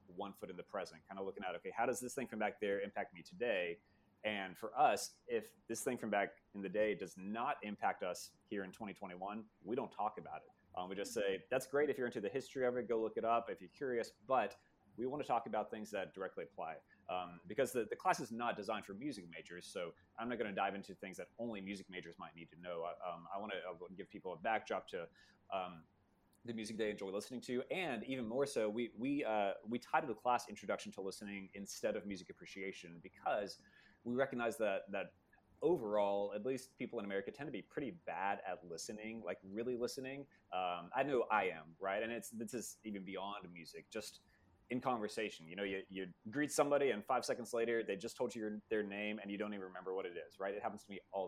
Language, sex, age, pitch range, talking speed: English, male, 30-49, 95-115 Hz, 235 wpm